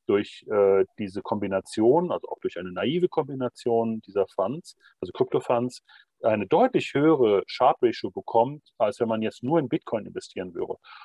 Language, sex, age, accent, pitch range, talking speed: German, male, 40-59, German, 120-170 Hz, 150 wpm